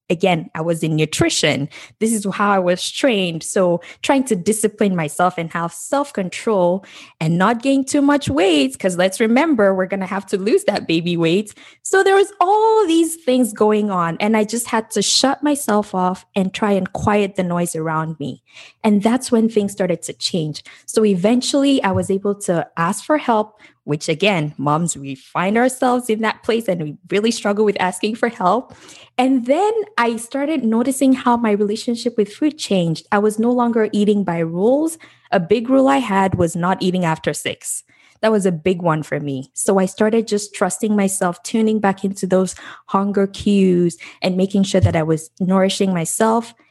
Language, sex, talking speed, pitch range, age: English, female, 190 wpm, 180-235 Hz, 20-39